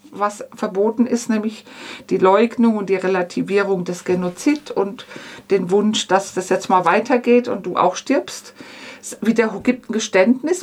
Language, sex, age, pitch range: German, female, 50-69, 200-270 Hz